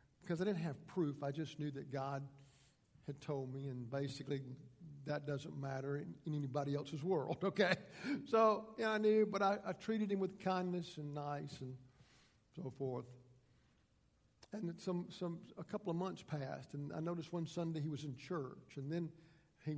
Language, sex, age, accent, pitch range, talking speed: English, male, 50-69, American, 135-170 Hz, 180 wpm